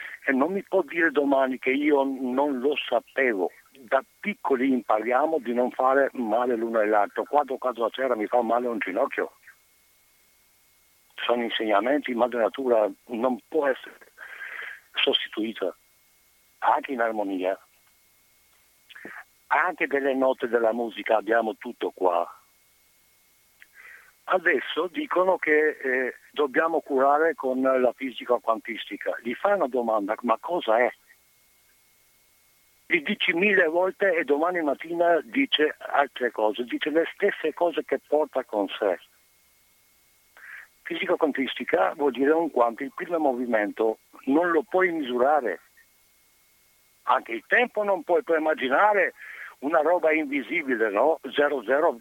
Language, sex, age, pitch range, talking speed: Italian, male, 60-79, 125-165 Hz, 125 wpm